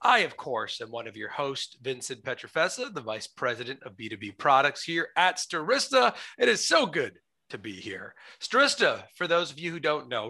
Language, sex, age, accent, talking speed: English, male, 40-59, American, 200 wpm